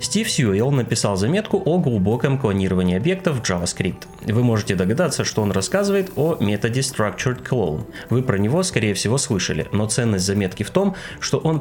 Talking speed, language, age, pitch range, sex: 170 wpm, Russian, 30-49, 95-150 Hz, male